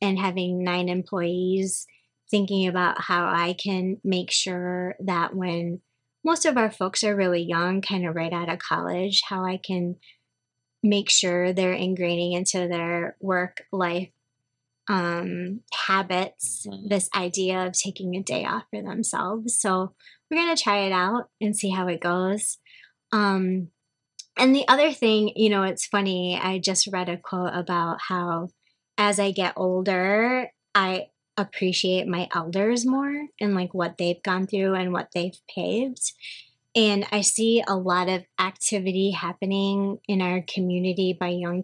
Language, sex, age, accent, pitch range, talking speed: English, female, 20-39, American, 180-205 Hz, 155 wpm